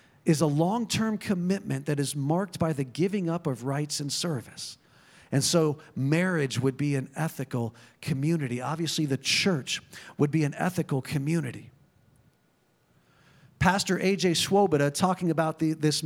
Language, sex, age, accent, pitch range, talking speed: English, male, 40-59, American, 145-185 Hz, 140 wpm